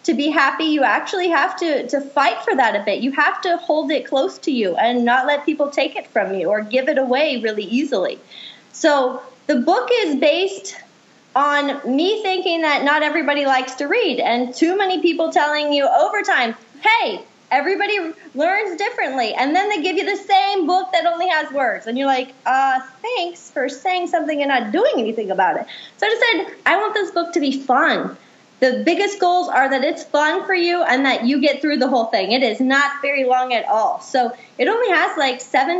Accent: American